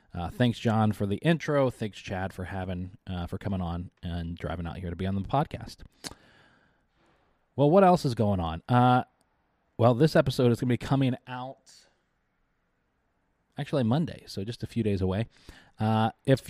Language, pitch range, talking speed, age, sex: English, 100-130 Hz, 180 wpm, 20-39, male